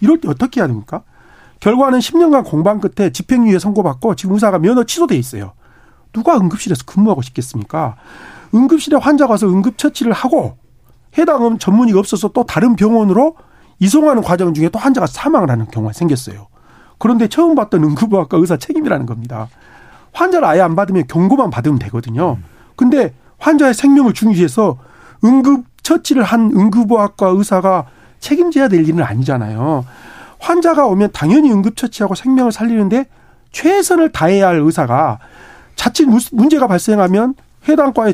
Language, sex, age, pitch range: Korean, male, 40-59, 155-255 Hz